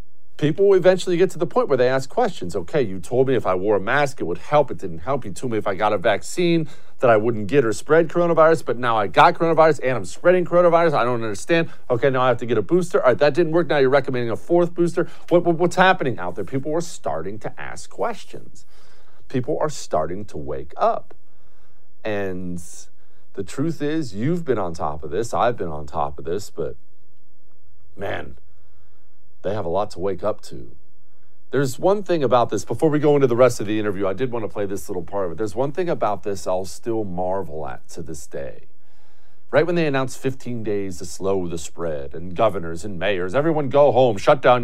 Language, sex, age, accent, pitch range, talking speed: English, male, 40-59, American, 100-165 Hz, 230 wpm